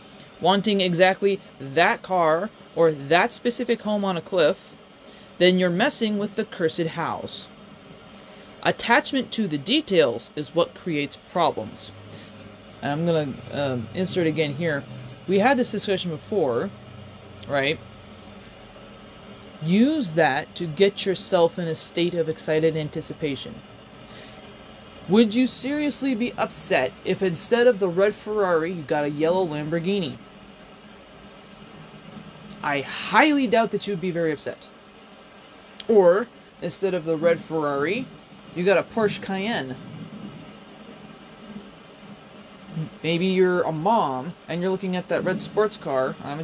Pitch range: 160-200 Hz